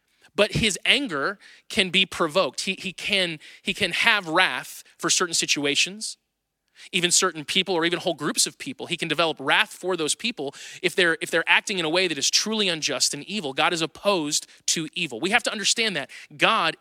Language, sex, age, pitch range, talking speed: English, male, 30-49, 160-200 Hz, 205 wpm